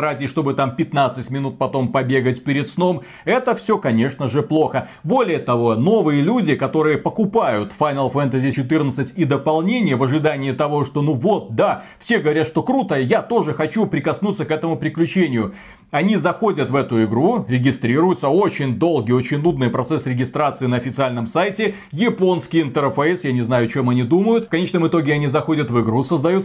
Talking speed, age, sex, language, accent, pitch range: 170 wpm, 30-49, male, Russian, native, 135-190 Hz